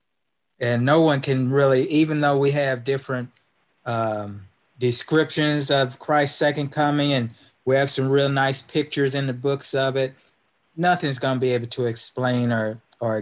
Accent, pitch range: American, 120-135 Hz